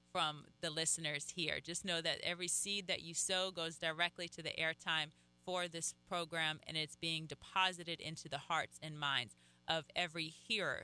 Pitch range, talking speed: 155-185 Hz, 175 wpm